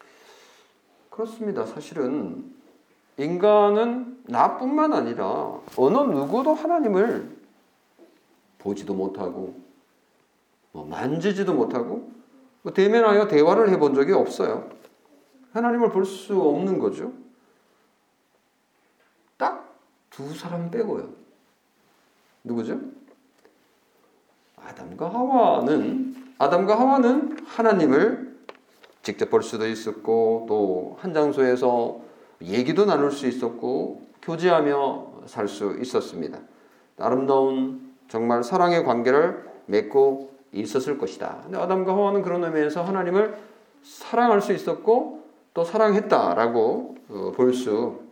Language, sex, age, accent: Korean, male, 40-59, native